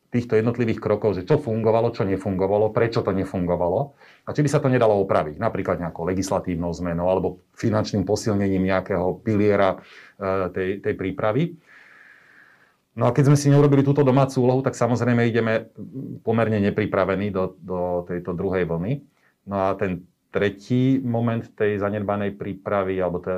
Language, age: Slovak, 30-49